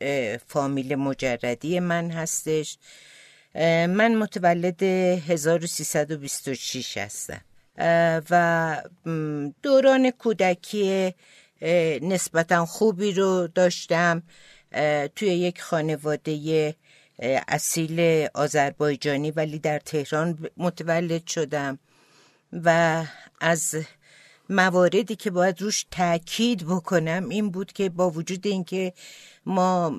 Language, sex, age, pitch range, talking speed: Persian, female, 50-69, 150-180 Hz, 80 wpm